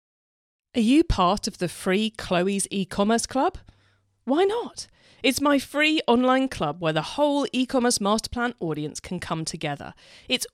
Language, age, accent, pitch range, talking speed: English, 40-59, British, 170-250 Hz, 150 wpm